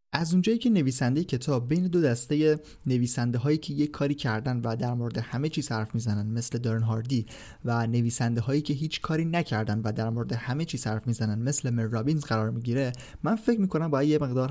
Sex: male